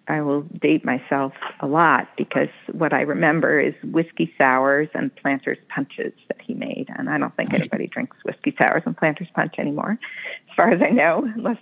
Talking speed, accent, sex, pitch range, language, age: 190 wpm, American, female, 150-215 Hz, English, 40-59